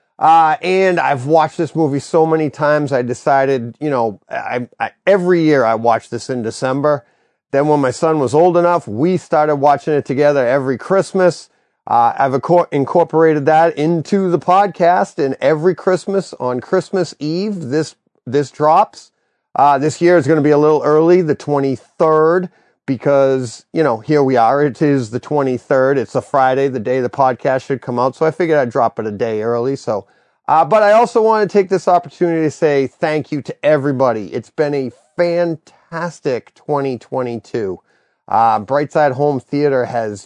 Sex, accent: male, American